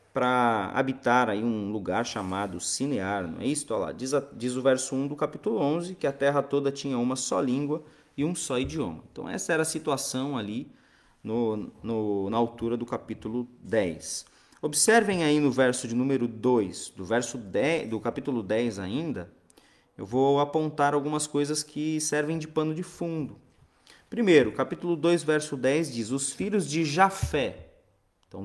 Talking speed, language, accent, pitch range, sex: 170 wpm, Portuguese, Brazilian, 120-170 Hz, male